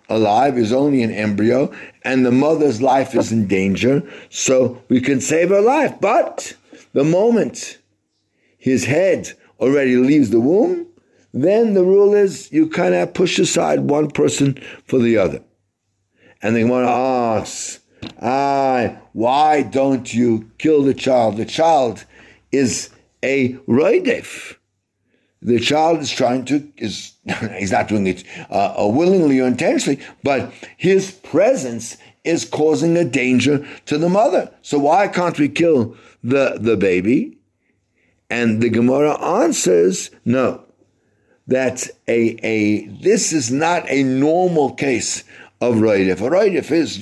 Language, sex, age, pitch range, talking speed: English, male, 60-79, 115-155 Hz, 140 wpm